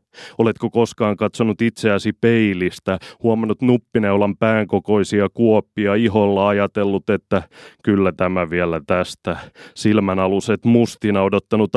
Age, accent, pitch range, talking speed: 30-49, native, 95-110 Hz, 95 wpm